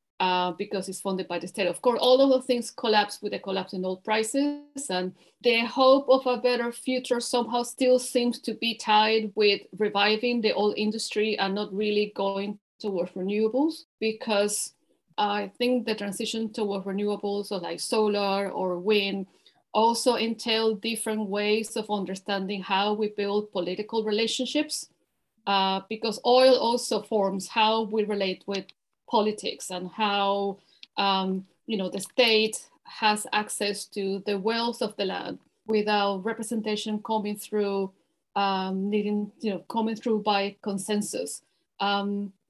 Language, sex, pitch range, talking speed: English, female, 195-230 Hz, 150 wpm